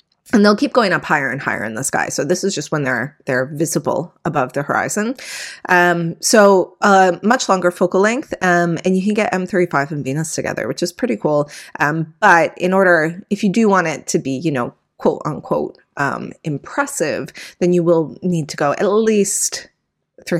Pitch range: 155-195 Hz